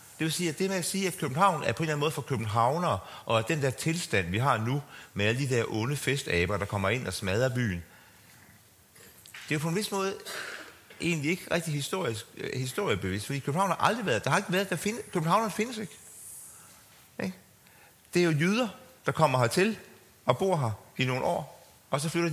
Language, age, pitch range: Danish, 40-59, 110-165 Hz